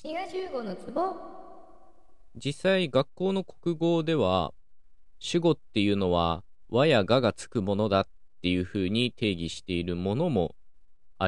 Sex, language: male, Japanese